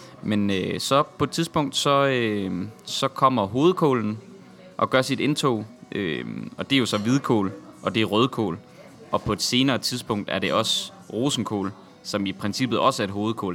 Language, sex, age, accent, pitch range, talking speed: Danish, male, 20-39, native, 105-135 Hz, 185 wpm